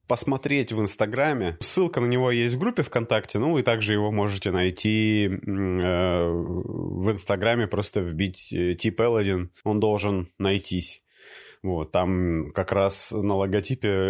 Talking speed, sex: 135 wpm, male